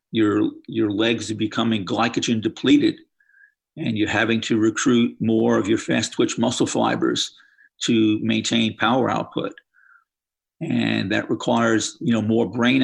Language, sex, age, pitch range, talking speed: English, male, 50-69, 110-150 Hz, 140 wpm